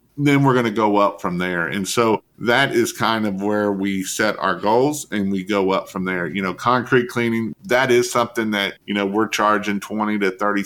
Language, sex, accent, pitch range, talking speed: English, male, American, 95-110 Hz, 225 wpm